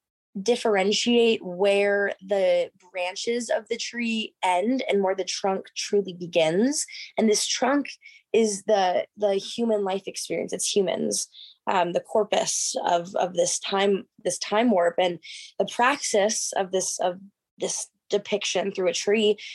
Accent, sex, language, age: American, female, English, 10-29